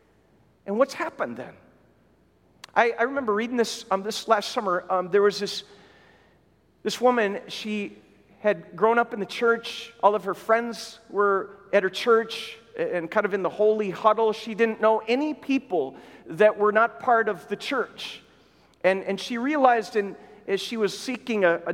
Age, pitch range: 50-69, 190-225 Hz